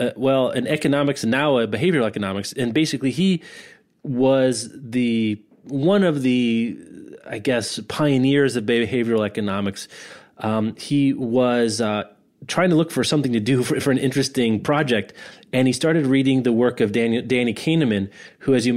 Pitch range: 110-135 Hz